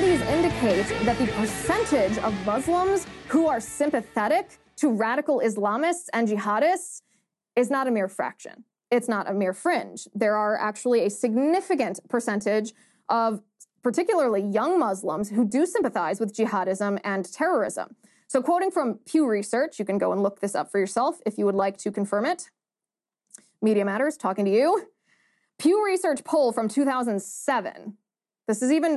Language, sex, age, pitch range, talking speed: English, female, 20-39, 210-305 Hz, 150 wpm